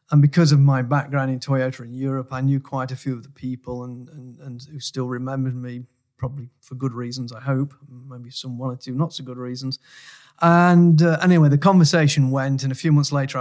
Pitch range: 130-145 Hz